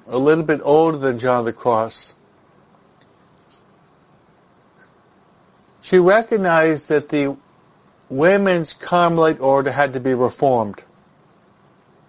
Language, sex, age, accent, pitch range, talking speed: English, male, 60-79, American, 145-180 Hz, 100 wpm